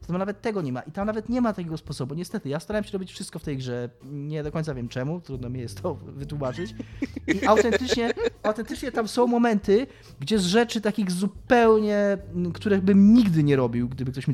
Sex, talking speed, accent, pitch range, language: male, 210 wpm, native, 140-195 Hz, Polish